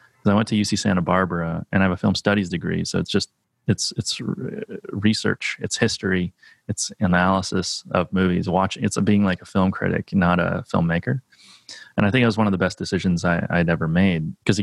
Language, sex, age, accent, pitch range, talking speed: English, male, 30-49, American, 90-105 Hz, 210 wpm